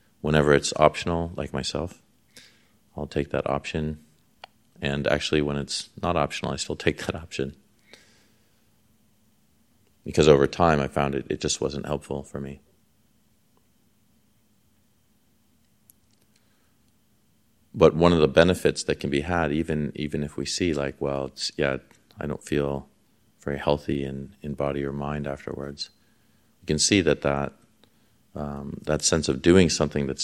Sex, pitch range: male, 70-85 Hz